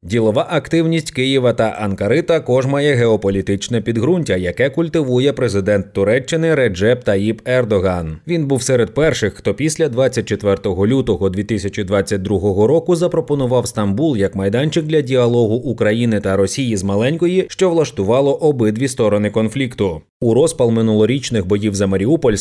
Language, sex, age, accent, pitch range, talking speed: Ukrainian, male, 30-49, native, 105-140 Hz, 130 wpm